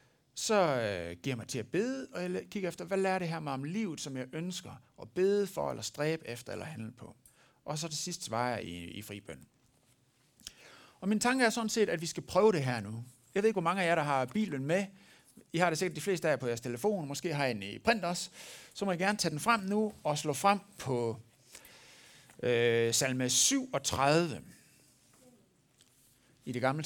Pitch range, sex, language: 125-180 Hz, male, Danish